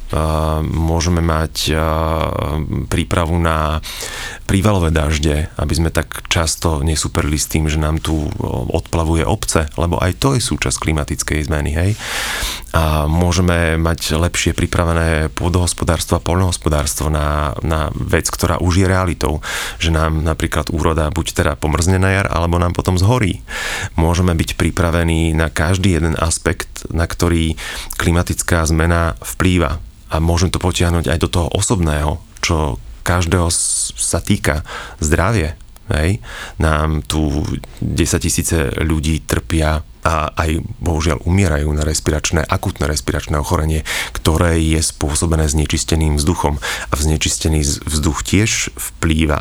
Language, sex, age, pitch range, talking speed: Slovak, male, 30-49, 80-90 Hz, 130 wpm